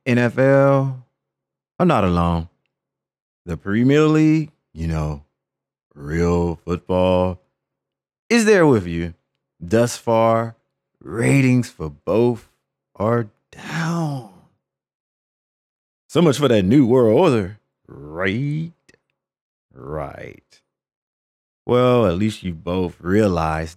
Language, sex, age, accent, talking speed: English, male, 30-49, American, 95 wpm